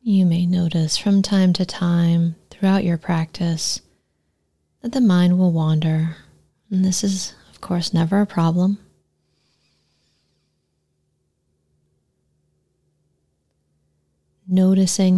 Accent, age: American, 30-49